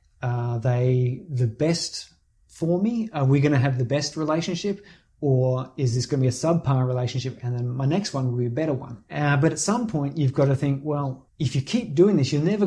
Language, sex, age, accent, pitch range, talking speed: English, male, 30-49, Australian, 125-150 Hz, 235 wpm